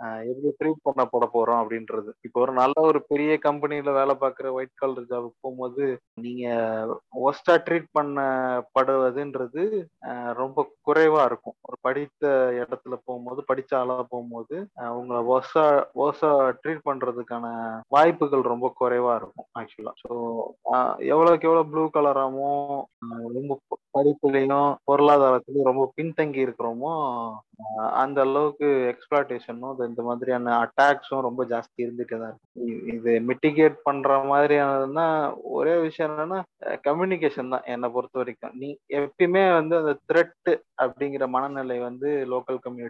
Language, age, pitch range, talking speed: Tamil, 20-39, 125-150 Hz, 75 wpm